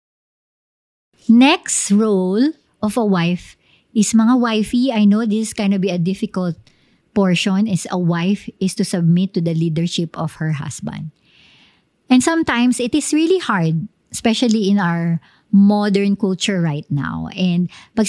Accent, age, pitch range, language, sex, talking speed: native, 50-69, 175-225 Hz, Filipino, male, 145 wpm